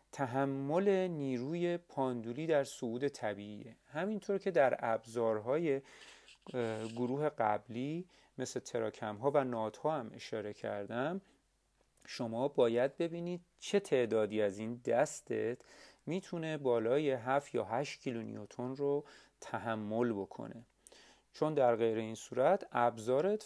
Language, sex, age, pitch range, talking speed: Persian, male, 40-59, 115-155 Hz, 115 wpm